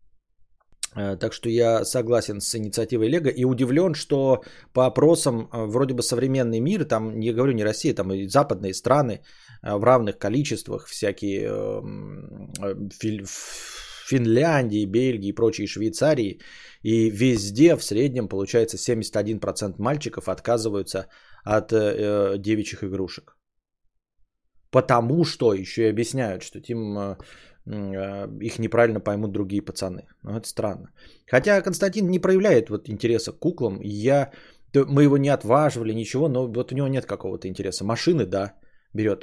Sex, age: male, 20-39